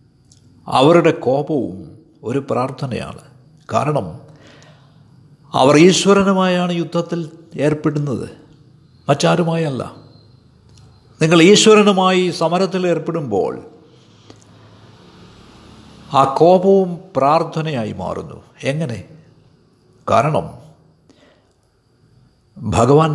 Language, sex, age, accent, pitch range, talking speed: Malayalam, male, 60-79, native, 130-180 Hz, 55 wpm